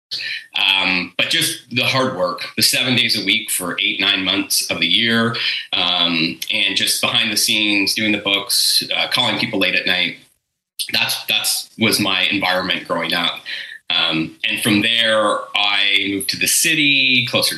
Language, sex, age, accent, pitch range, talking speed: English, male, 30-49, American, 100-120 Hz, 170 wpm